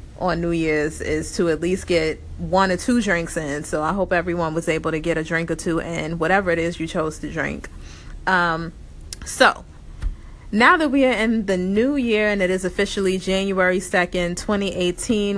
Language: English